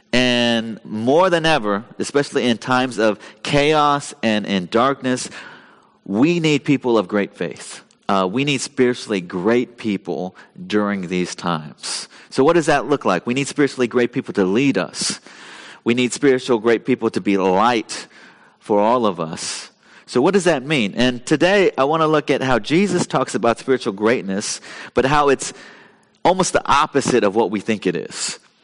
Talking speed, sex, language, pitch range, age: 175 wpm, male, English, 110-135 Hz, 30-49